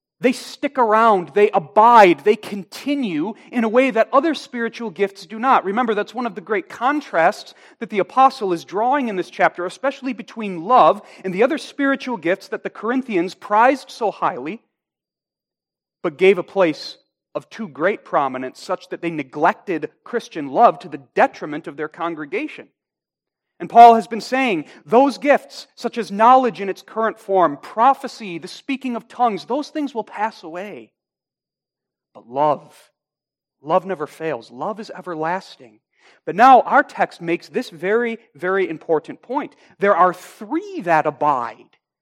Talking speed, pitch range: 160 wpm, 175-250 Hz